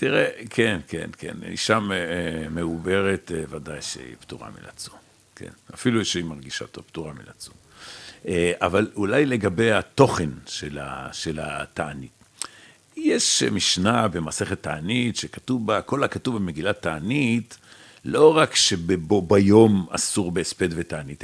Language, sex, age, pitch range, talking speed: Hebrew, male, 60-79, 80-105 Hz, 110 wpm